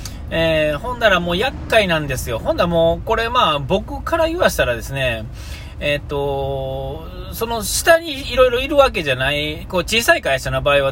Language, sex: Japanese, male